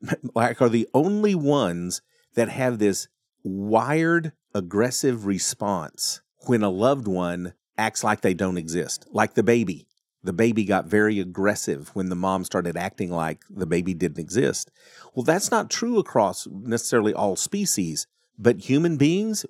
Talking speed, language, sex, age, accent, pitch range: 150 wpm, English, male, 40-59, American, 95-130 Hz